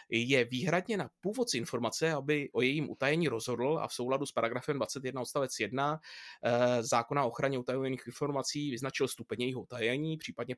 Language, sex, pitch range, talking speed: Czech, male, 115-135 Hz, 160 wpm